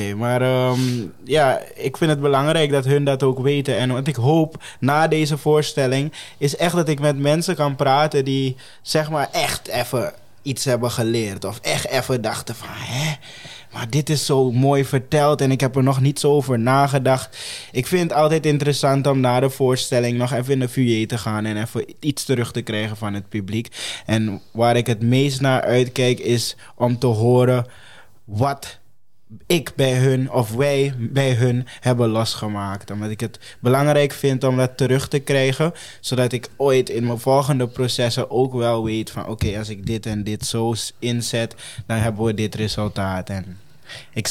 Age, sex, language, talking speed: 20-39, male, Dutch, 185 wpm